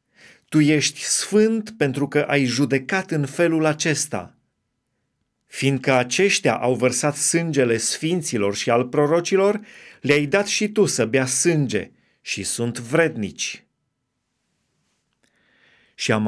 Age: 30-49